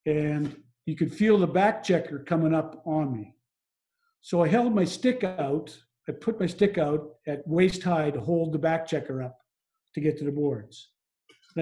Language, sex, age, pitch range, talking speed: English, male, 50-69, 145-180 Hz, 190 wpm